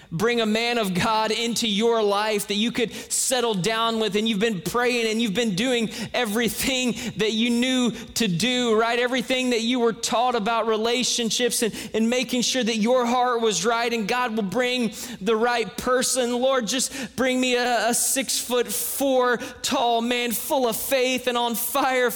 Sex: male